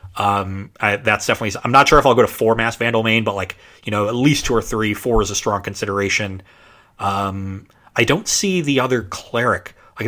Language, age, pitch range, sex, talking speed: English, 30-49, 100-125 Hz, male, 220 wpm